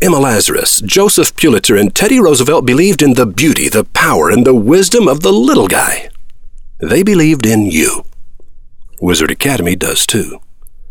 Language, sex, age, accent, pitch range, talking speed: English, male, 50-69, American, 110-170 Hz, 155 wpm